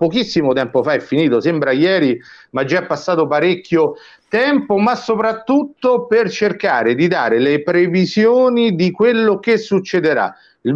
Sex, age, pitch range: male, 50-69, 165-220 Hz